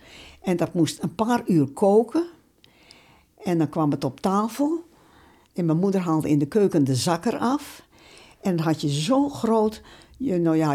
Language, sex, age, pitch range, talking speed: Dutch, female, 60-79, 155-200 Hz, 180 wpm